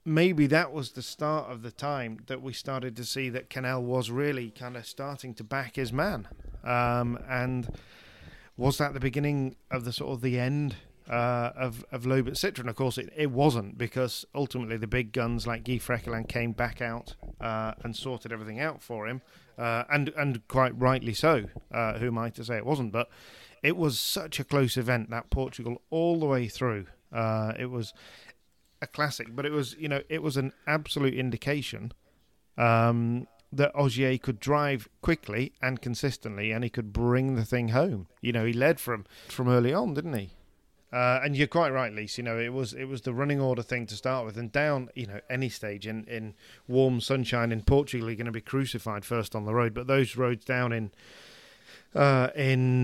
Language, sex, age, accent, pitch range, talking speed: English, male, 40-59, British, 115-135 Hz, 200 wpm